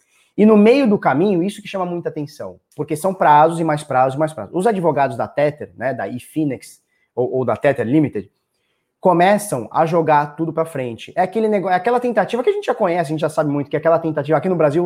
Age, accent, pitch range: 20-39, Brazilian, 145-210 Hz